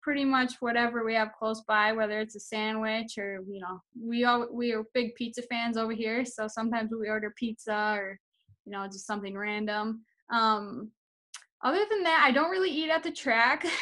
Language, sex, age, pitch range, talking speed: English, female, 10-29, 215-255 Hz, 190 wpm